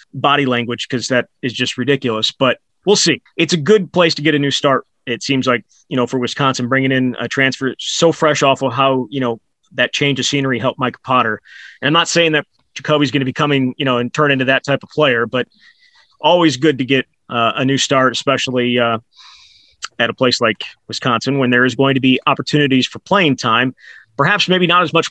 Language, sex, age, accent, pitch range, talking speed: English, male, 30-49, American, 130-150 Hz, 225 wpm